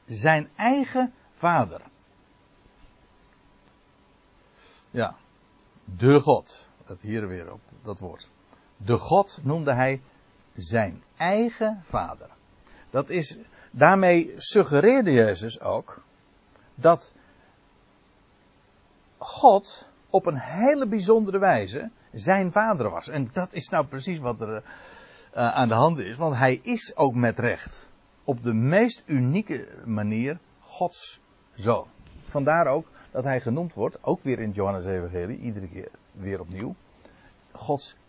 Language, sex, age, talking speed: Dutch, male, 60-79, 120 wpm